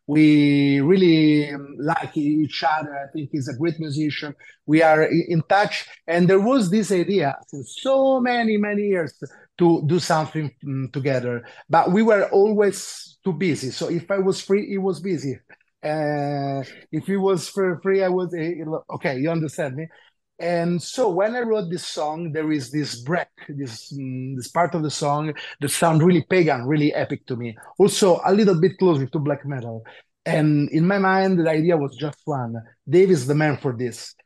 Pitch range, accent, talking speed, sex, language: 145-185 Hz, Italian, 180 wpm, male, English